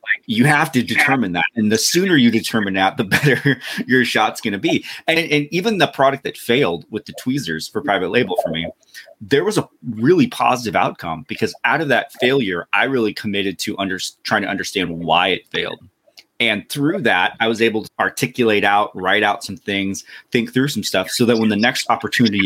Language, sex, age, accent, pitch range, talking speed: English, male, 30-49, American, 95-130 Hz, 205 wpm